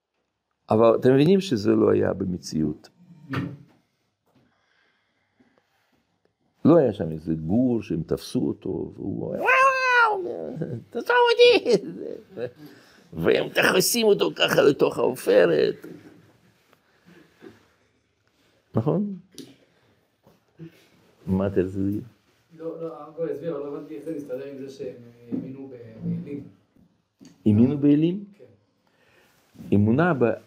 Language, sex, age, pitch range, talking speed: Hebrew, male, 50-69, 105-165 Hz, 35 wpm